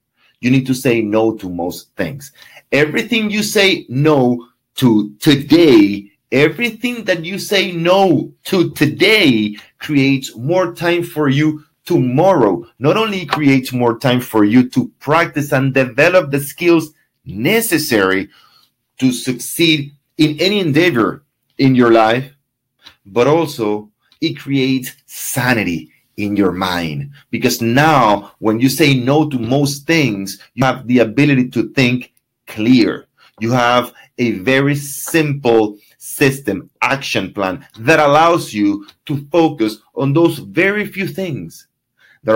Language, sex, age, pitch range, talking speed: English, male, 30-49, 120-160 Hz, 130 wpm